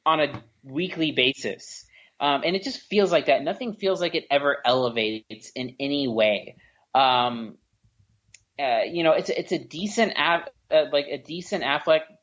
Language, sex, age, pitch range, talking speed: English, male, 30-49, 130-165 Hz, 160 wpm